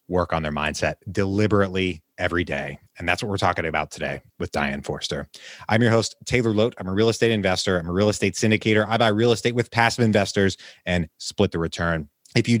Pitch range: 95-115 Hz